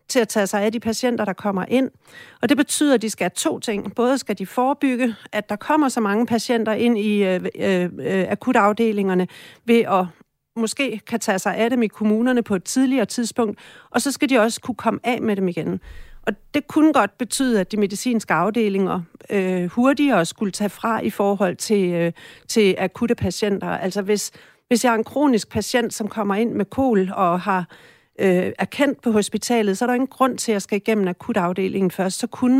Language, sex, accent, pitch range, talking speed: English, female, Danish, 200-240 Hz, 210 wpm